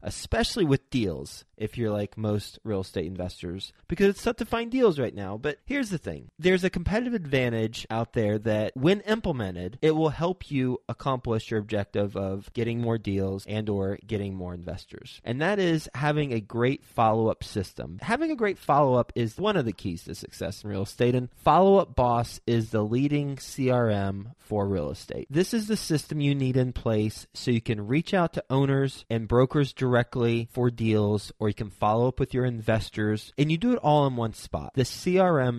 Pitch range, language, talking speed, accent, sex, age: 110-150 Hz, English, 200 wpm, American, male, 30-49